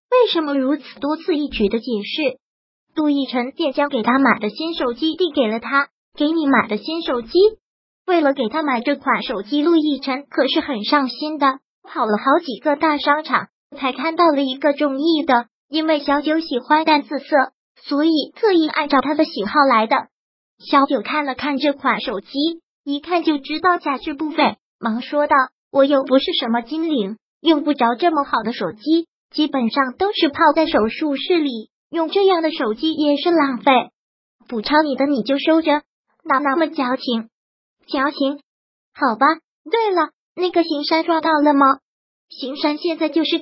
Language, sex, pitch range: Chinese, male, 260-320 Hz